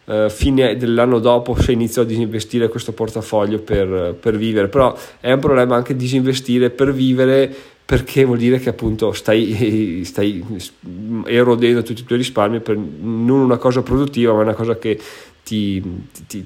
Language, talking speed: Italian, 155 wpm